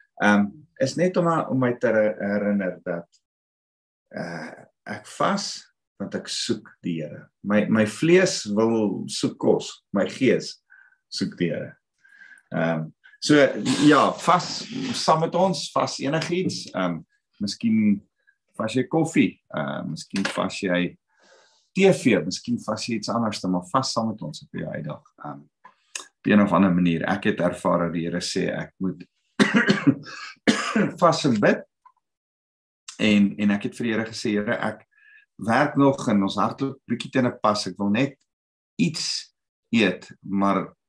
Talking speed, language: 140 wpm, English